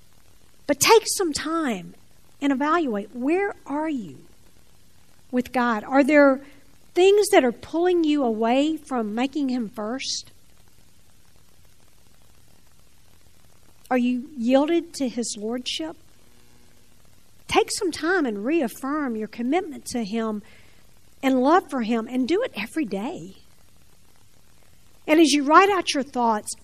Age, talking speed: 50-69, 120 wpm